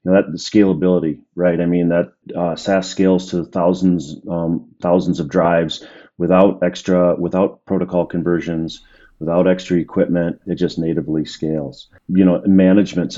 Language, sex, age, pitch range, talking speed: English, male, 40-59, 80-90 Hz, 145 wpm